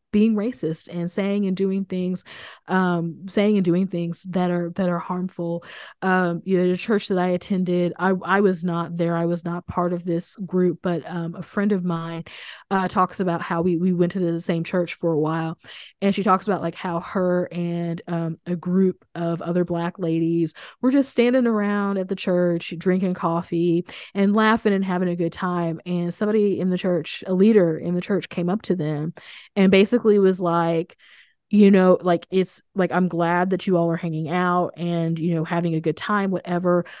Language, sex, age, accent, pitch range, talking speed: English, female, 20-39, American, 170-195 Hz, 205 wpm